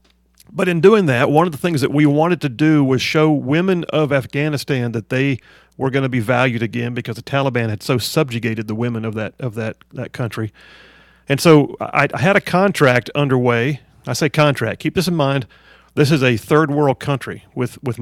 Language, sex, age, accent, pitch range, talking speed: English, male, 40-59, American, 115-150 Hz, 210 wpm